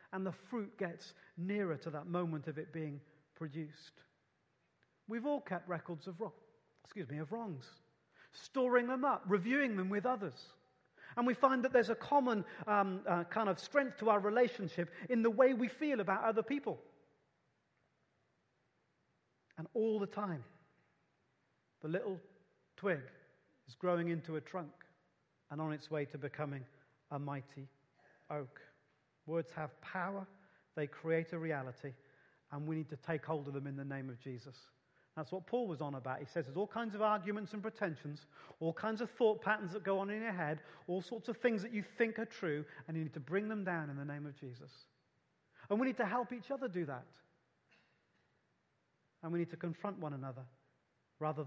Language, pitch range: English, 145-210 Hz